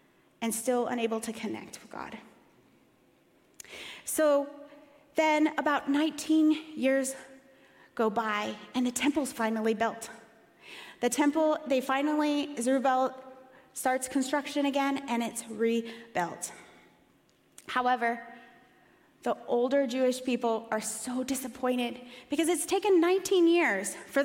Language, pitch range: English, 210-275 Hz